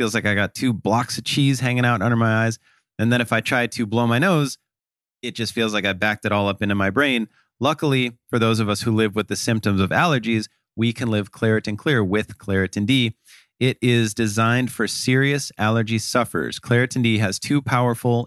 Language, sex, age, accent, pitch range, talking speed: English, male, 30-49, American, 100-125 Hz, 215 wpm